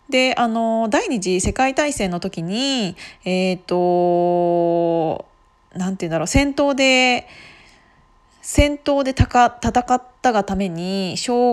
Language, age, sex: Japanese, 20-39, female